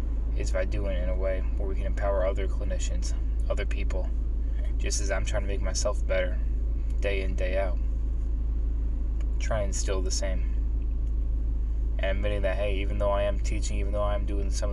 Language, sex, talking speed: English, male, 190 wpm